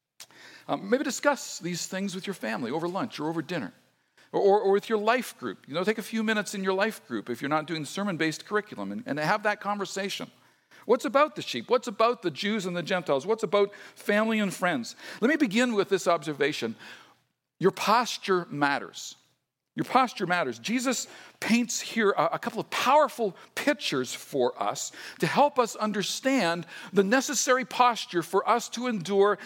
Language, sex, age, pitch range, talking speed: English, male, 50-69, 185-255 Hz, 185 wpm